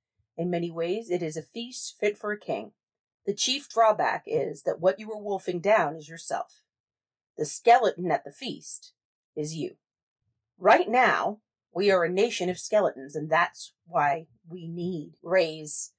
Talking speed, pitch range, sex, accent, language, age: 170 wpm, 155-210 Hz, female, American, English, 40-59